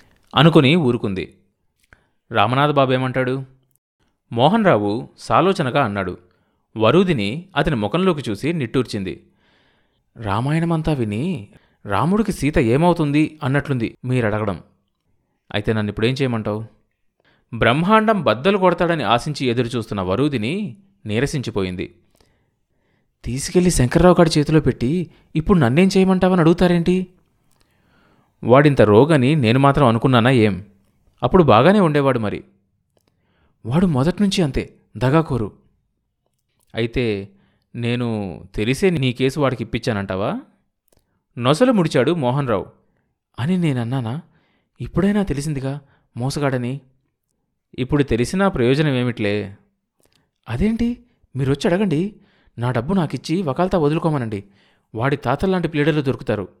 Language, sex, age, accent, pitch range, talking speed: Telugu, male, 30-49, native, 115-165 Hz, 90 wpm